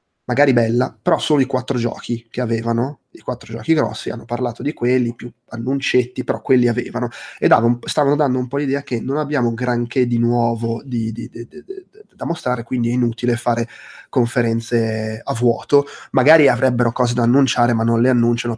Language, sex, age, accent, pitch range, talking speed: Italian, male, 20-39, native, 115-130 Hz, 185 wpm